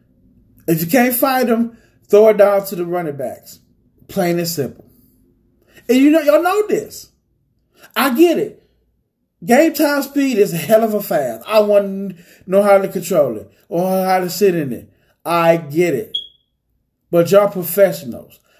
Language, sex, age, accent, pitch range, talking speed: English, male, 30-49, American, 170-215 Hz, 175 wpm